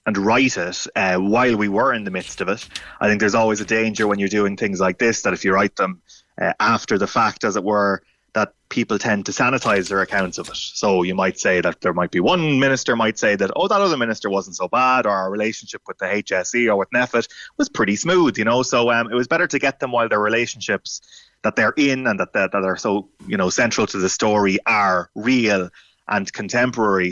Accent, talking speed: Irish, 240 wpm